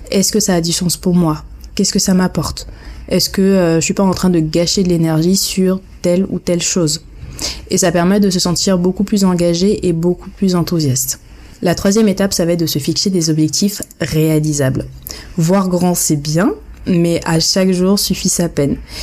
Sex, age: female, 20-39